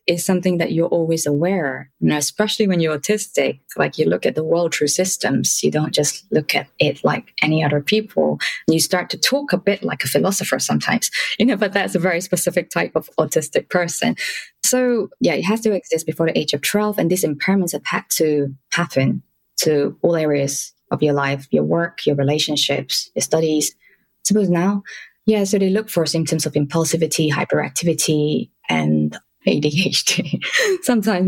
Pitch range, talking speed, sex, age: 150-200 Hz, 180 wpm, female, 20-39